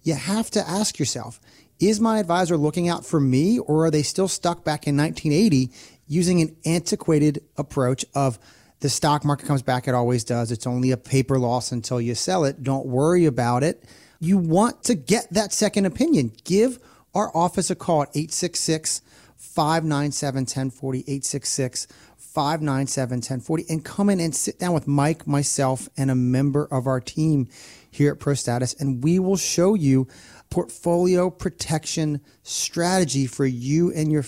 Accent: American